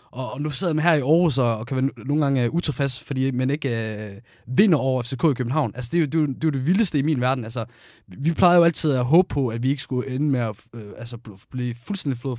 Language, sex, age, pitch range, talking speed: Danish, male, 20-39, 120-150 Hz, 265 wpm